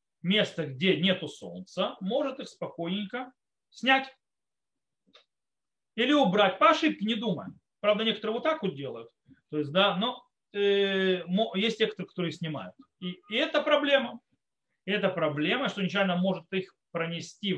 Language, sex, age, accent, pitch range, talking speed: Russian, male, 40-59, native, 160-210 Hz, 145 wpm